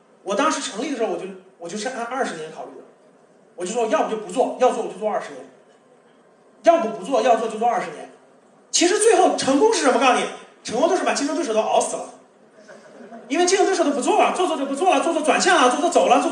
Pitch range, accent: 220-300 Hz, native